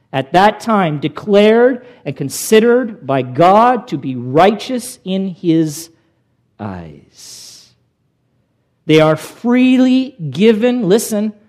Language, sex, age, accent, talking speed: English, male, 50-69, American, 100 wpm